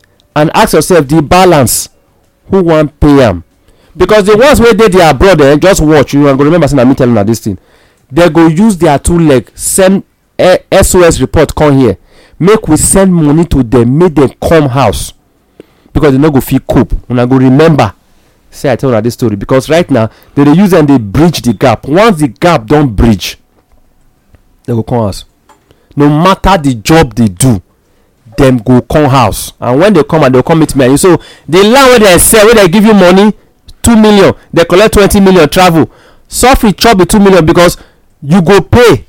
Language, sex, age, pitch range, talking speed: English, male, 40-59, 120-175 Hz, 210 wpm